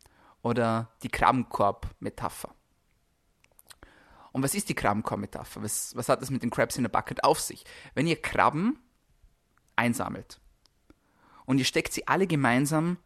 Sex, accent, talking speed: male, German, 140 wpm